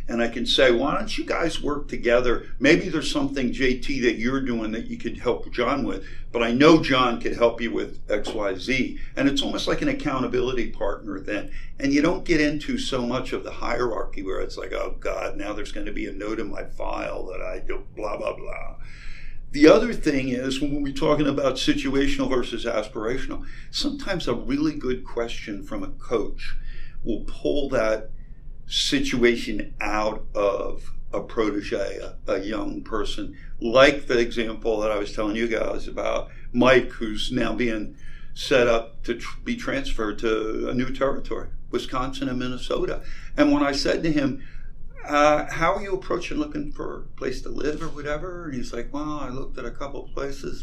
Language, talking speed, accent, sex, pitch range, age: English, 190 wpm, American, male, 120-165 Hz, 60-79